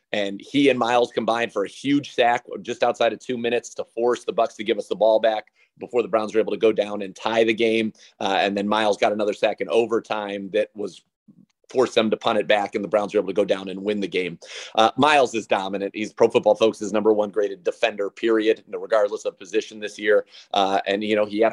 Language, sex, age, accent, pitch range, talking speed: English, male, 30-49, American, 105-120 Hz, 250 wpm